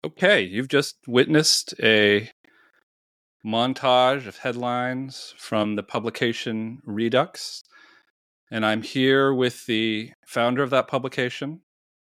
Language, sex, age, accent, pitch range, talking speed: English, male, 40-59, American, 105-125 Hz, 105 wpm